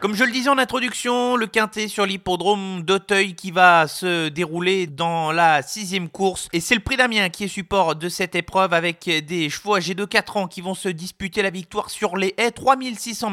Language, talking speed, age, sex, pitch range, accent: French, 210 wpm, 30-49, male, 185-225 Hz, French